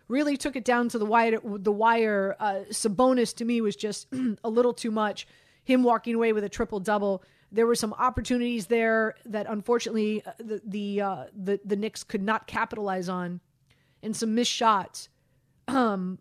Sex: female